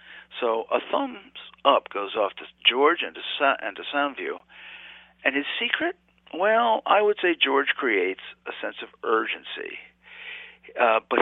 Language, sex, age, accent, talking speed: English, male, 50-69, American, 150 wpm